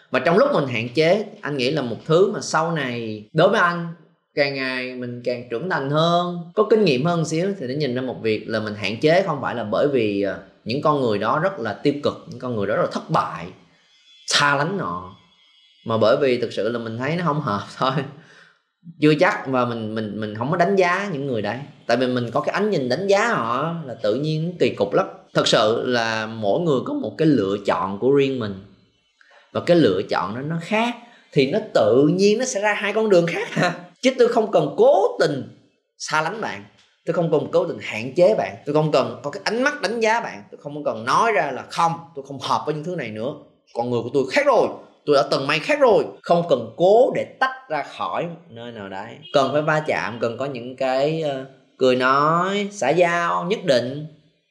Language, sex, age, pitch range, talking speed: Vietnamese, male, 20-39, 120-175 Hz, 235 wpm